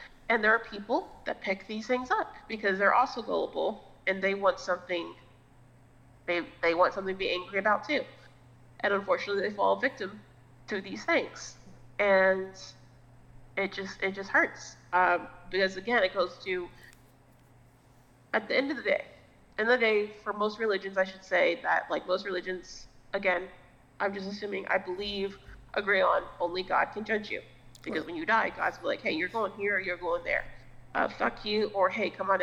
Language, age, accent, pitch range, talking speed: English, 30-49, American, 135-205 Hz, 185 wpm